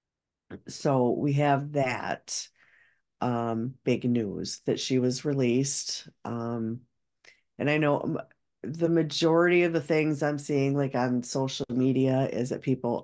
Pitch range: 130-165 Hz